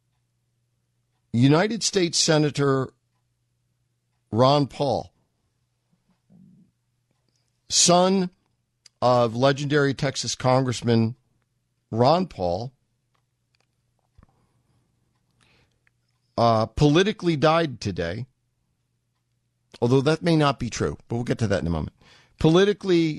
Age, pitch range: 50-69, 115-135 Hz